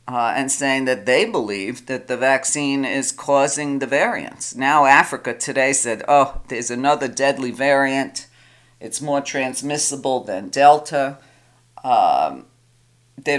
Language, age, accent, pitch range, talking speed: English, 50-69, American, 120-140 Hz, 130 wpm